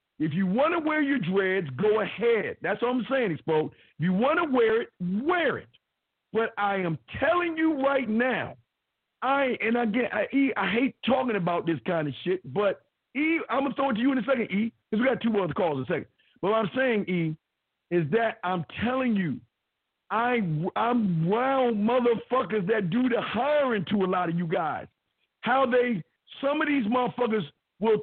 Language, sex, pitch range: English, male, 200-275 Hz